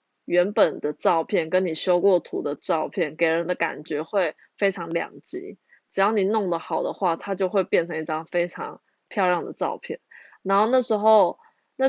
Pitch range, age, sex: 175-250 Hz, 20-39, female